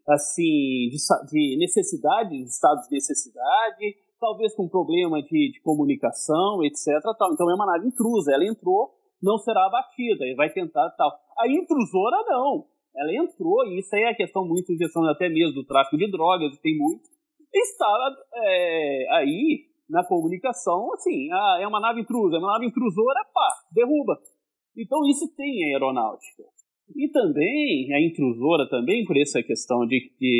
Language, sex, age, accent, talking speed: Portuguese, male, 40-59, Brazilian, 165 wpm